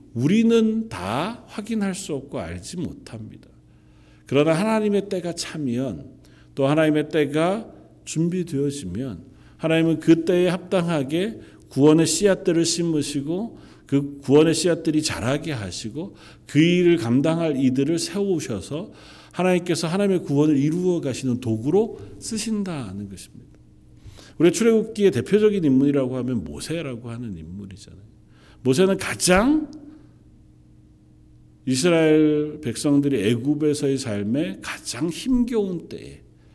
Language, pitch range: Korean, 115-165 Hz